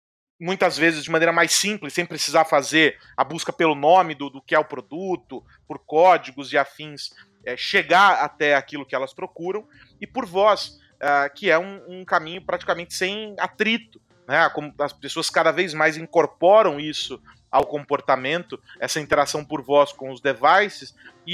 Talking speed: 165 wpm